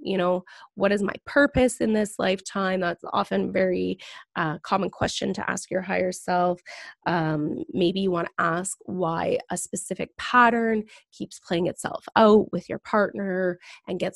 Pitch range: 185-225 Hz